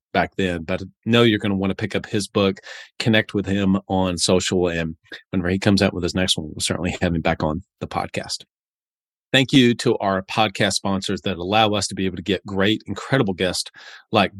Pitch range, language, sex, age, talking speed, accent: 95-110 Hz, English, male, 30-49, 225 wpm, American